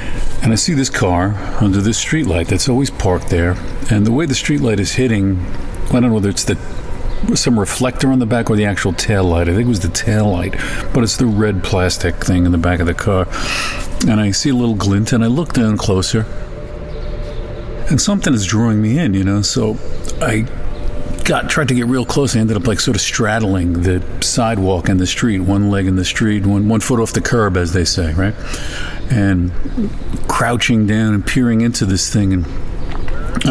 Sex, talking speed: male, 210 wpm